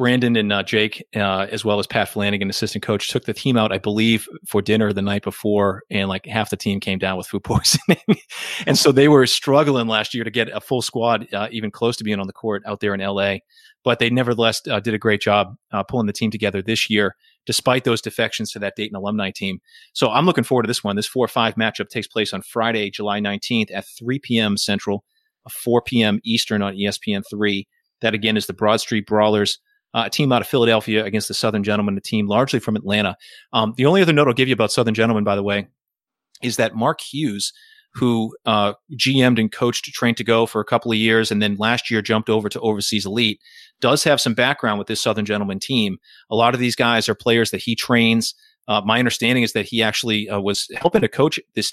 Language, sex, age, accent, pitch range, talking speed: English, male, 30-49, American, 105-120 Hz, 235 wpm